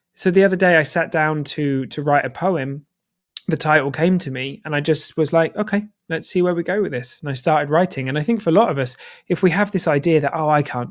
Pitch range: 130-160 Hz